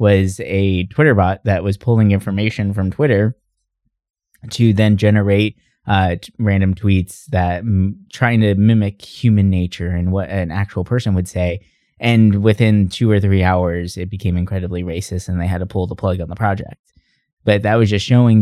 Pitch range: 95-115 Hz